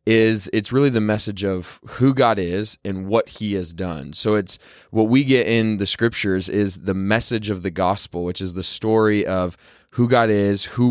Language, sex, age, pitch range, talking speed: English, male, 20-39, 95-115 Hz, 205 wpm